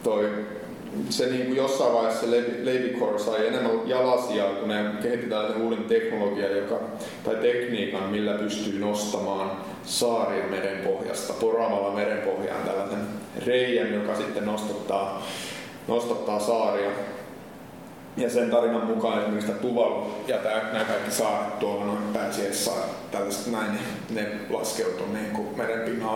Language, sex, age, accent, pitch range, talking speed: Finnish, male, 30-49, native, 105-115 Hz, 110 wpm